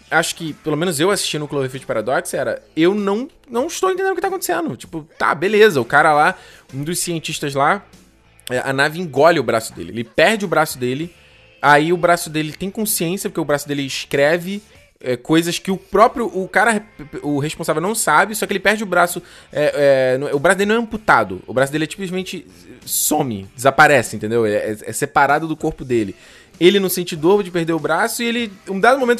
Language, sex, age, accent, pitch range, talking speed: Portuguese, male, 20-39, Brazilian, 115-195 Hz, 205 wpm